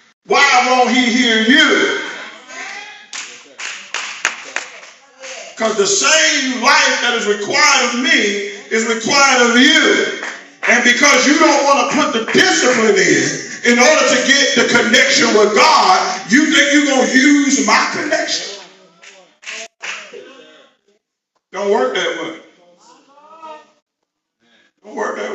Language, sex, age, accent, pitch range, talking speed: English, male, 40-59, American, 225-300 Hz, 120 wpm